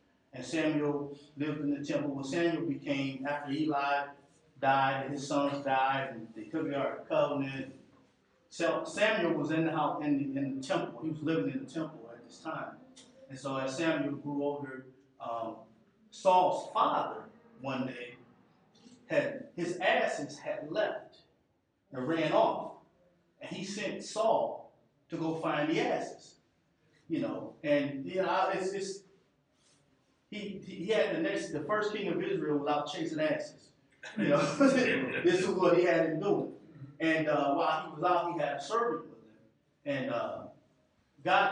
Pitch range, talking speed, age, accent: 135-180 Hz, 165 wpm, 30-49, American